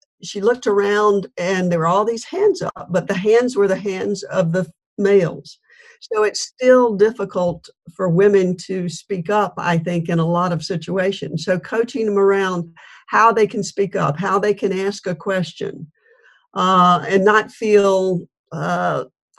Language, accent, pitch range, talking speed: English, American, 180-220 Hz, 170 wpm